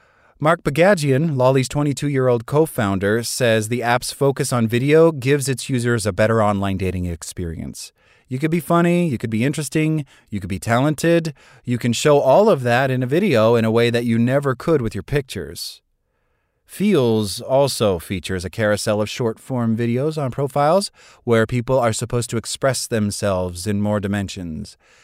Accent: American